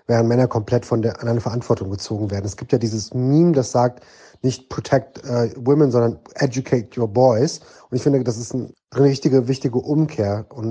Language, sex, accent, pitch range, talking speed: German, male, German, 120-140 Hz, 195 wpm